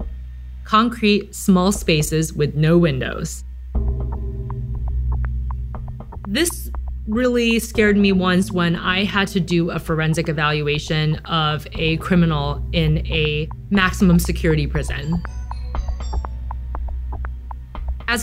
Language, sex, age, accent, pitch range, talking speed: English, female, 30-49, American, 150-195 Hz, 90 wpm